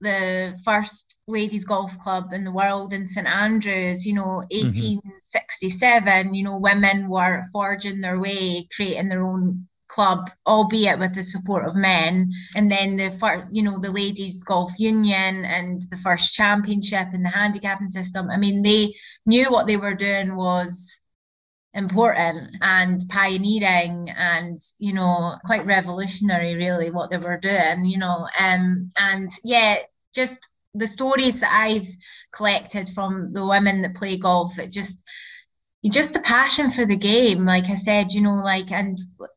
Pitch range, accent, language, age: 185-205 Hz, British, English, 20-39